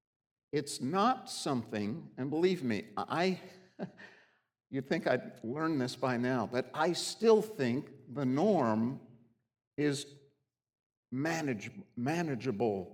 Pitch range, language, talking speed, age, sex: 110-140 Hz, English, 105 wpm, 60-79, male